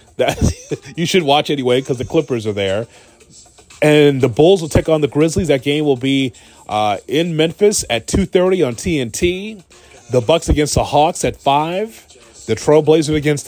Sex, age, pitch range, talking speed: male, 30-49, 120-155 Hz, 175 wpm